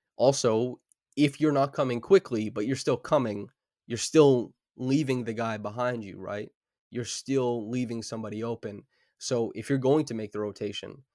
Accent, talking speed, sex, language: American, 165 wpm, male, English